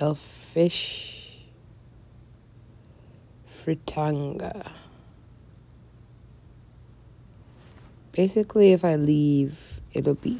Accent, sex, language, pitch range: American, female, English, 115-150 Hz